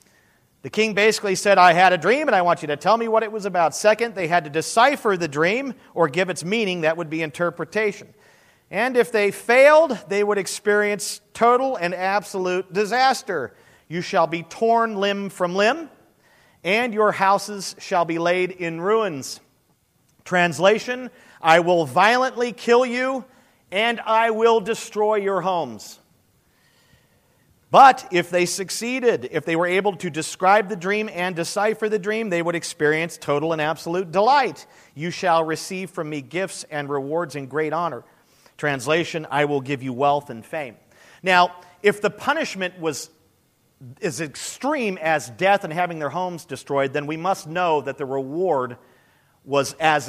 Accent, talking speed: American, 165 wpm